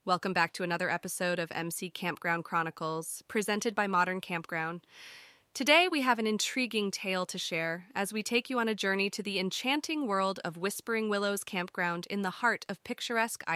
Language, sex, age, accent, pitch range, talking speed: English, female, 20-39, American, 170-215 Hz, 180 wpm